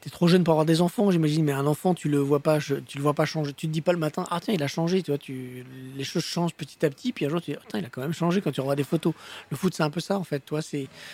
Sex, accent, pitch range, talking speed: male, French, 135-165 Hz, 350 wpm